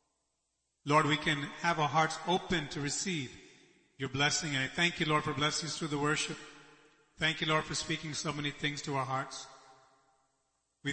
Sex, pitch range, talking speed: male, 140-170 Hz, 180 wpm